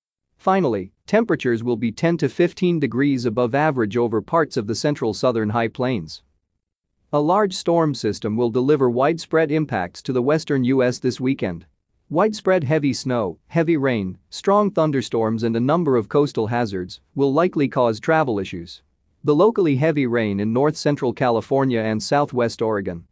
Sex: male